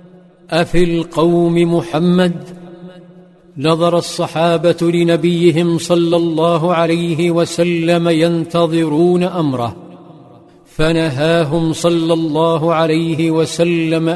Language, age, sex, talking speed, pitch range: Arabic, 50-69, male, 70 wpm, 160-175 Hz